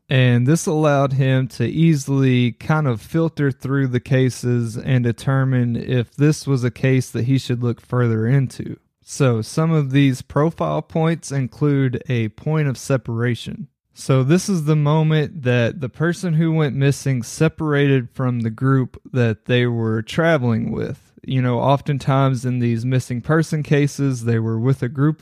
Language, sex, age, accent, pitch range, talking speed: English, male, 20-39, American, 120-150 Hz, 165 wpm